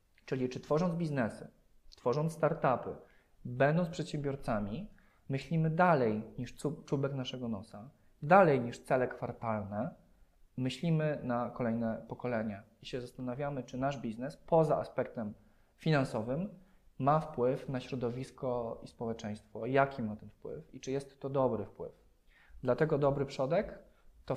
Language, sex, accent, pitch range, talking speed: Polish, male, native, 115-140 Hz, 125 wpm